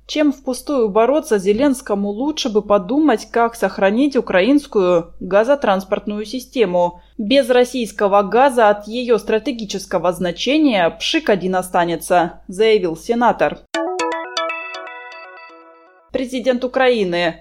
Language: Russian